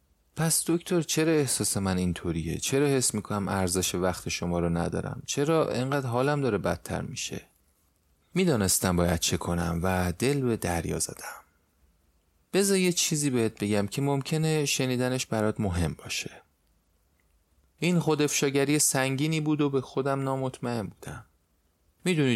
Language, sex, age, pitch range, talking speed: Persian, male, 30-49, 90-140 Hz, 135 wpm